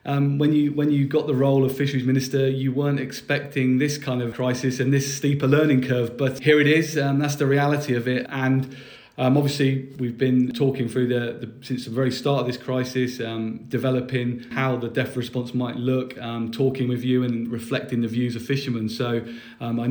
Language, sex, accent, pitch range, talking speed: English, male, British, 120-140 Hz, 215 wpm